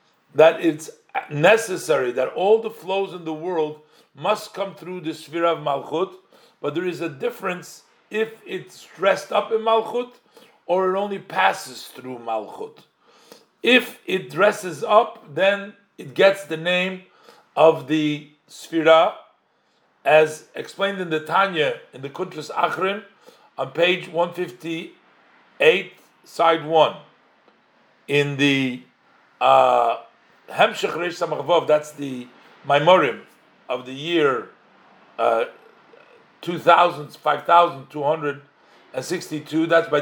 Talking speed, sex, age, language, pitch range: 110 wpm, male, 50-69, English, 155-195 Hz